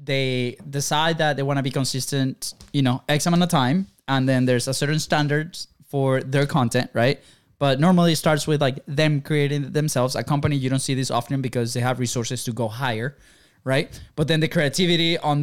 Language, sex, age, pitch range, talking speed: English, male, 20-39, 130-155 Hz, 200 wpm